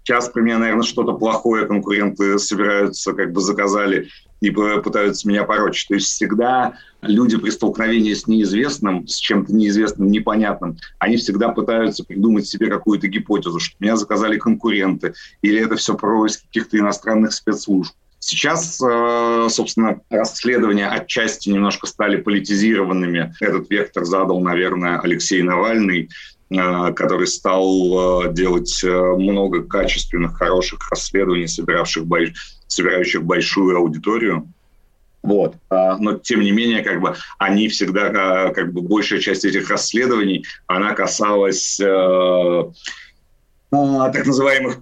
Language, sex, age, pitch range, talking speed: Russian, male, 30-49, 95-110 Hz, 115 wpm